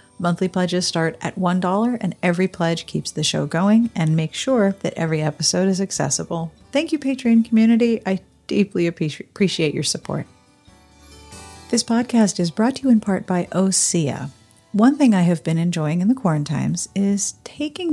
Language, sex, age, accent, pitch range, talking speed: English, female, 40-59, American, 165-230 Hz, 165 wpm